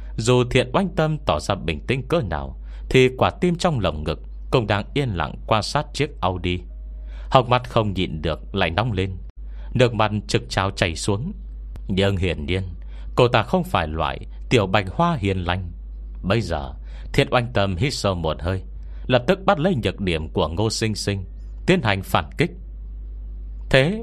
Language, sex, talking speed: Vietnamese, male, 185 wpm